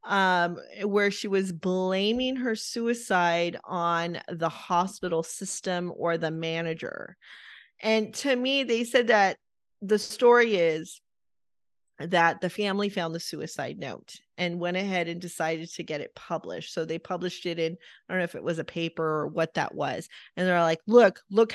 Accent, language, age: American, English, 30-49